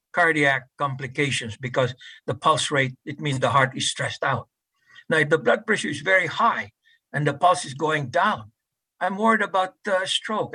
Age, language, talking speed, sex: 60-79, English, 180 wpm, male